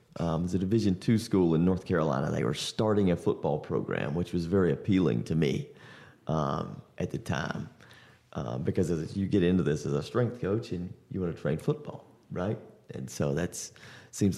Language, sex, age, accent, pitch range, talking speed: English, male, 30-49, American, 90-115 Hz, 200 wpm